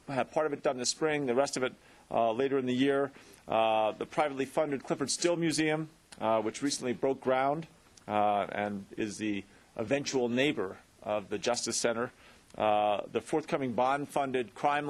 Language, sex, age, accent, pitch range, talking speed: English, male, 40-59, American, 115-145 Hz, 175 wpm